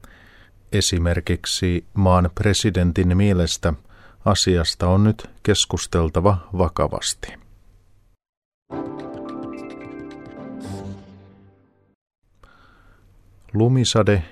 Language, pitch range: Finnish, 90-100 Hz